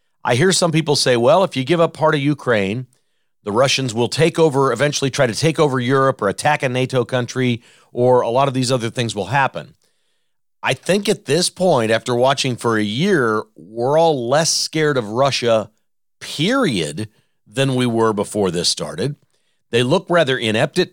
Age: 40-59